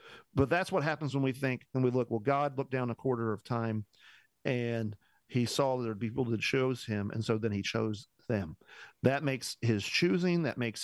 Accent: American